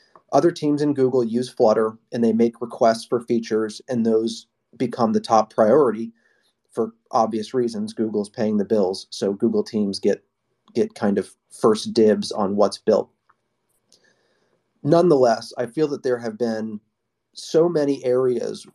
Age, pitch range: 30-49, 115-130 Hz